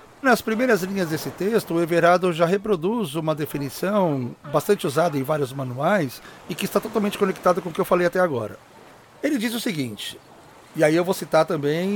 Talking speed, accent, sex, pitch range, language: 190 wpm, Brazilian, male, 145-195 Hz, Portuguese